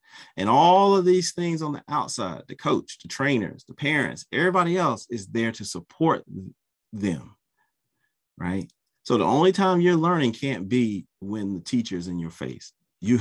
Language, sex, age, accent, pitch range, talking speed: English, male, 40-59, American, 85-115 Hz, 170 wpm